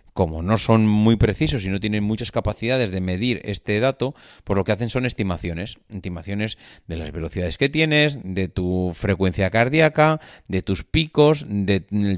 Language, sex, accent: Spanish, male, Spanish